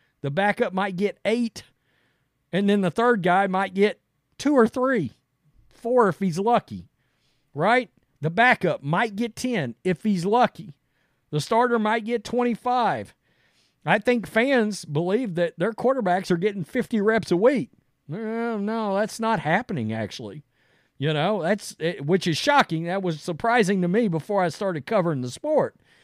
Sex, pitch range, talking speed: male, 135-205 Hz, 155 wpm